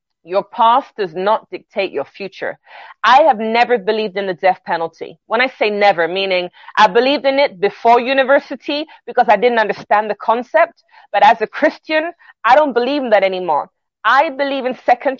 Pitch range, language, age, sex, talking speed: 205-275 Hz, English, 30-49, female, 180 wpm